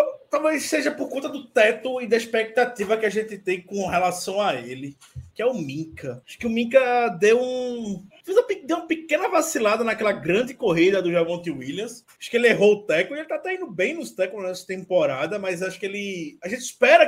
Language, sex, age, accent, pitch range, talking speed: Portuguese, male, 20-39, Brazilian, 180-250 Hz, 215 wpm